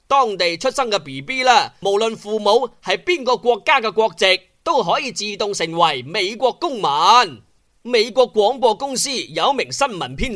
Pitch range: 200-290 Hz